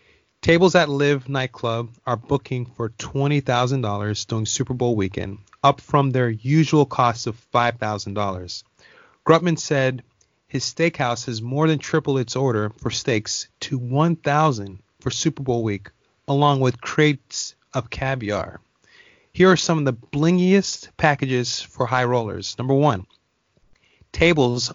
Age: 30-49